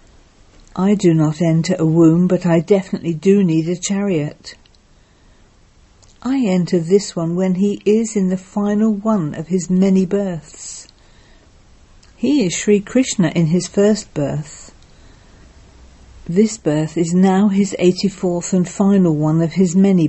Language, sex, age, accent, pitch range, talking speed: English, female, 50-69, British, 140-195 Hz, 145 wpm